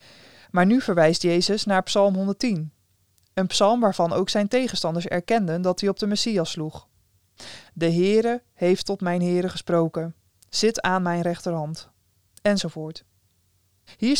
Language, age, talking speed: Dutch, 20-39, 140 wpm